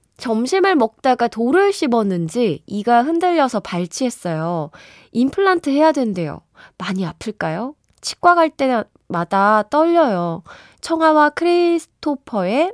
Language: Korean